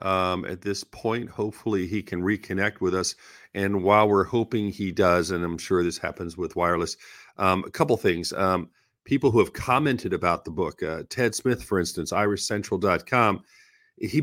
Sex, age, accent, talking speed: male, 40-59, American, 175 wpm